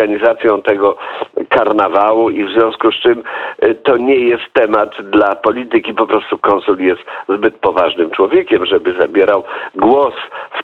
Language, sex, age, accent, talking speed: Polish, male, 50-69, native, 145 wpm